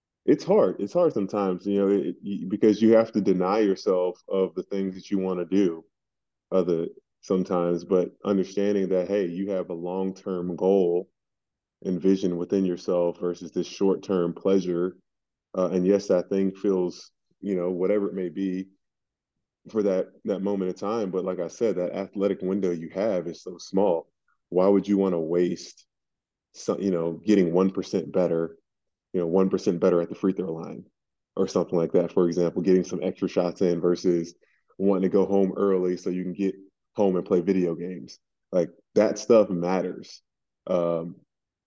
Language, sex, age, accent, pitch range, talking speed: English, male, 20-39, American, 90-100 Hz, 175 wpm